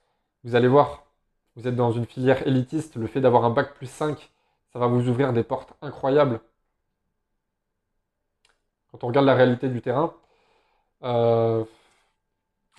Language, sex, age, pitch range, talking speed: French, male, 20-39, 115-145 Hz, 145 wpm